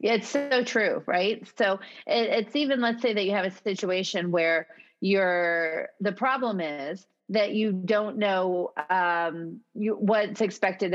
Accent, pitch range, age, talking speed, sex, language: American, 180-240 Hz, 30-49, 140 wpm, female, English